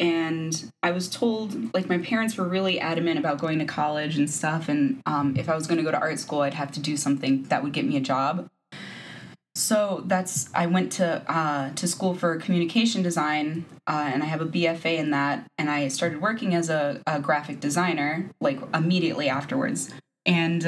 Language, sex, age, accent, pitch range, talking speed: English, female, 20-39, American, 150-195 Hz, 205 wpm